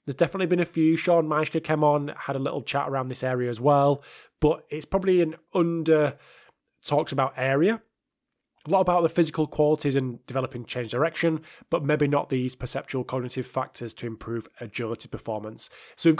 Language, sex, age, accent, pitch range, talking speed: English, male, 20-39, British, 125-160 Hz, 175 wpm